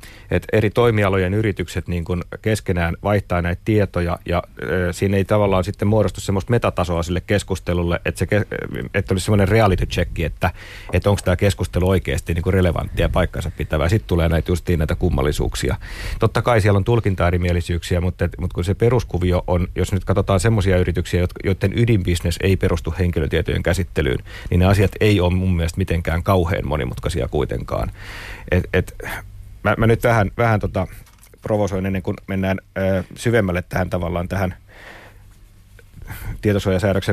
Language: Finnish